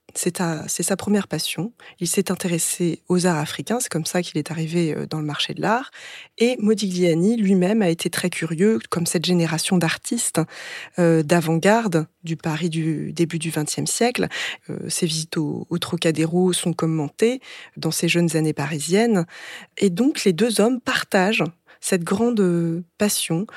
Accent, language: French, French